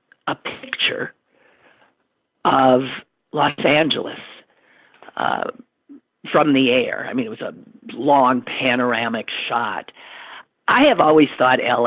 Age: 50-69